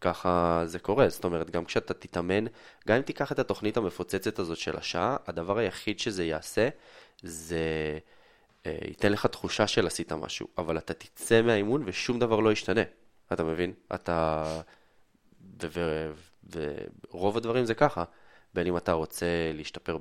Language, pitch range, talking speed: Hebrew, 85-105 Hz, 150 wpm